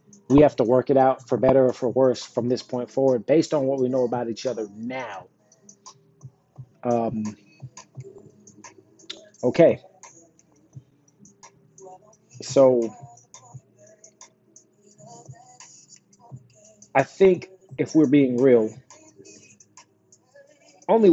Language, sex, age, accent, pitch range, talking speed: English, male, 40-59, American, 125-145 Hz, 95 wpm